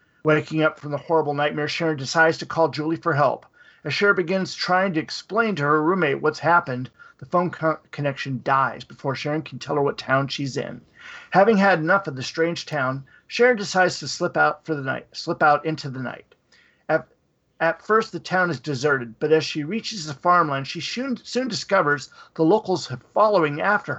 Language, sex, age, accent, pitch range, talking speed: English, male, 50-69, American, 145-185 Hz, 200 wpm